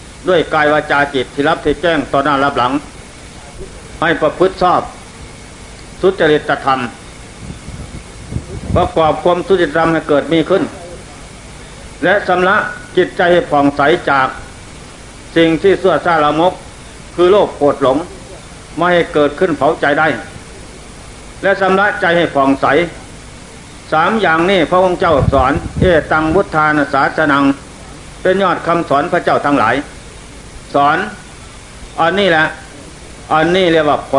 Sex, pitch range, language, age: male, 145-180 Hz, Thai, 60-79